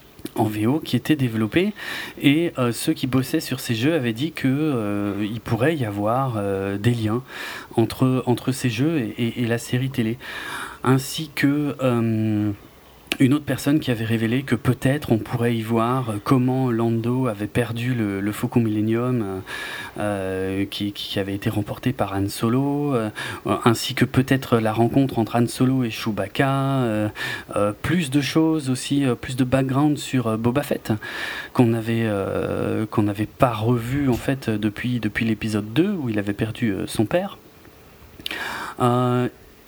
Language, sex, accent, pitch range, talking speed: French, male, French, 110-135 Hz, 165 wpm